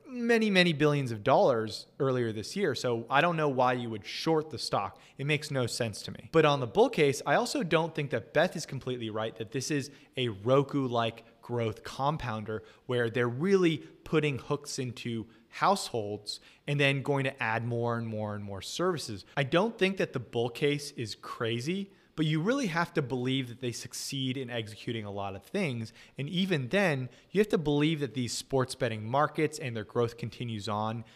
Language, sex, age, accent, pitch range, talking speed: English, male, 20-39, American, 115-155 Hz, 200 wpm